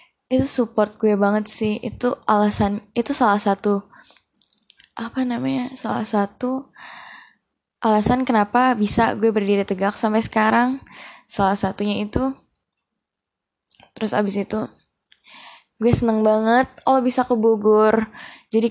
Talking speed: 115 wpm